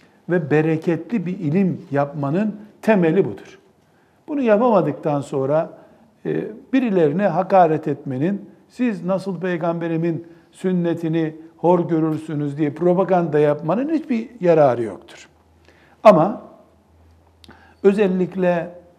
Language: Turkish